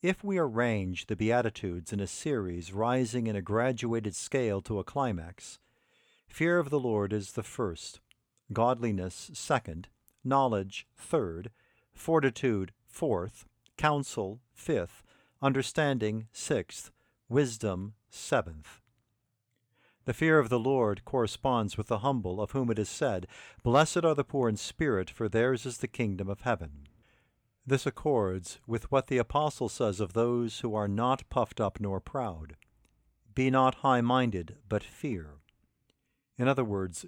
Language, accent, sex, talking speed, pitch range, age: English, American, male, 140 wpm, 105-130 Hz, 50-69